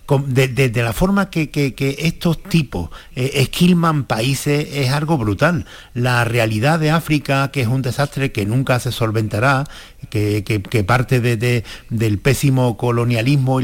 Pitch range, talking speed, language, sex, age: 110-145 Hz, 145 wpm, Spanish, male, 50-69